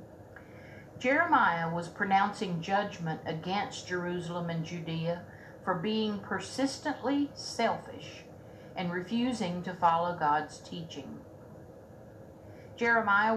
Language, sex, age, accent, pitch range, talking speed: English, female, 50-69, American, 165-245 Hz, 85 wpm